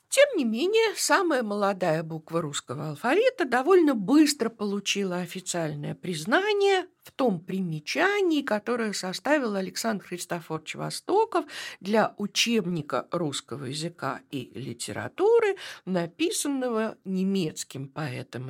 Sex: female